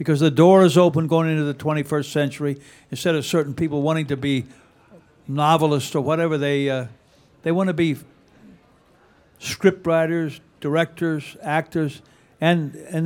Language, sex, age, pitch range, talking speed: English, male, 60-79, 140-170 Hz, 145 wpm